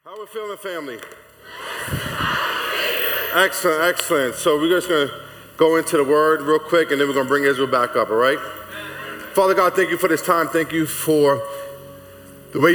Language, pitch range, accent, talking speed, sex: English, 130-160 Hz, American, 195 wpm, male